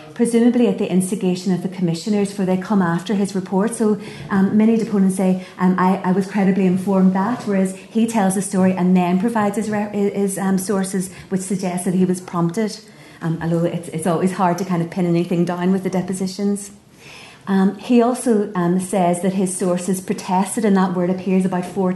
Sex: female